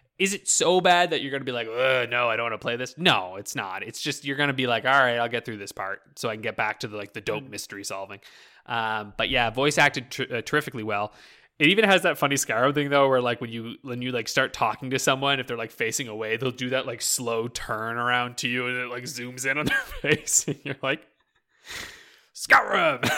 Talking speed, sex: 255 wpm, male